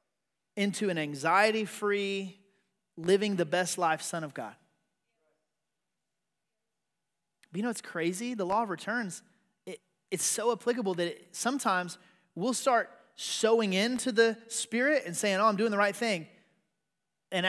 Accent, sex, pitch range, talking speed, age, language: American, male, 175-245 Hz, 120 wpm, 30-49, English